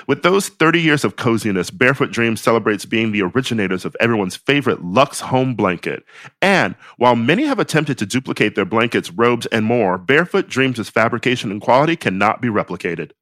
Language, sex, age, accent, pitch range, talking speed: English, male, 40-59, American, 110-145 Hz, 175 wpm